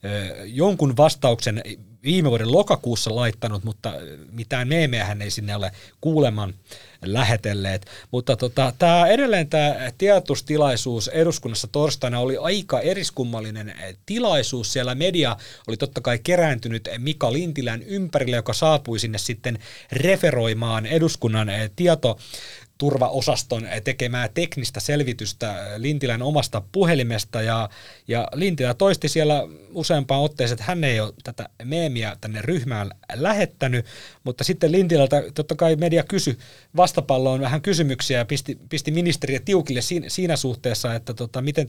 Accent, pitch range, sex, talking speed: native, 115-155 Hz, male, 120 wpm